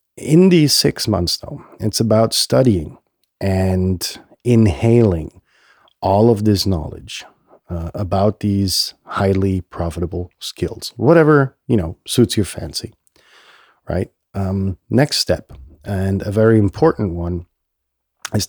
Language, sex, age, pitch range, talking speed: English, male, 40-59, 90-115 Hz, 115 wpm